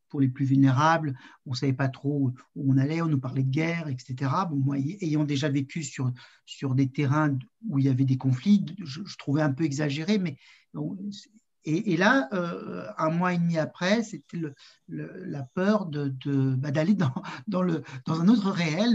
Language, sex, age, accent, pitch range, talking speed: French, male, 50-69, French, 140-195 Hz, 210 wpm